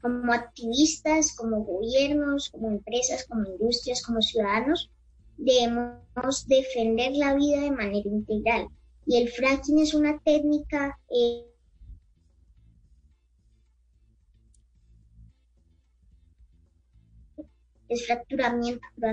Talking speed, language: 80 wpm, English